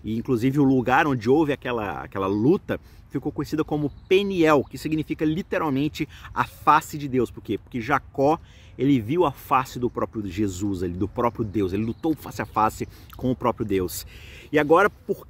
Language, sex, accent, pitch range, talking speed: Portuguese, male, Brazilian, 105-140 Hz, 175 wpm